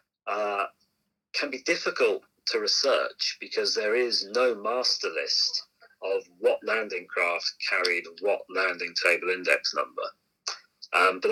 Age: 30-49